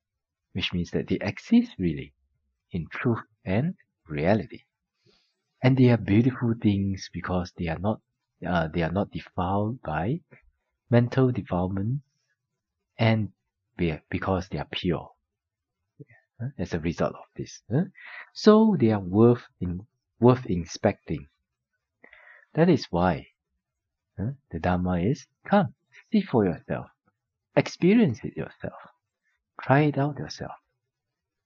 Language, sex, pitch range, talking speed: English, male, 90-125 Hz, 120 wpm